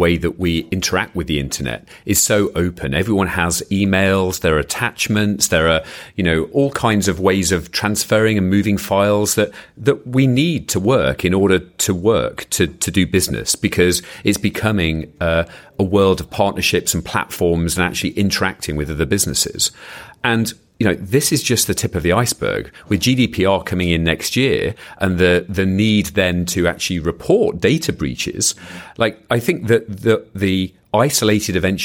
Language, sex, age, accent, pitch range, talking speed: English, male, 40-59, British, 90-110 Hz, 175 wpm